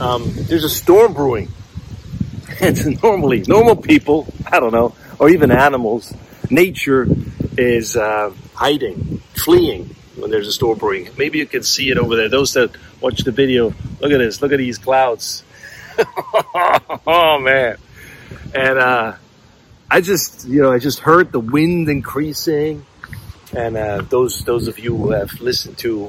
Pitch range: 115-150 Hz